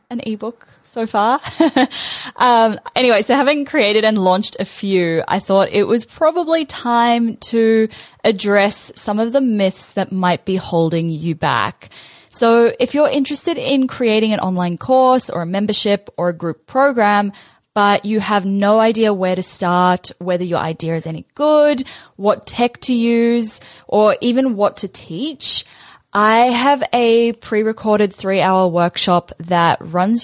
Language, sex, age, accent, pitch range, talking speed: English, female, 10-29, Australian, 185-235 Hz, 155 wpm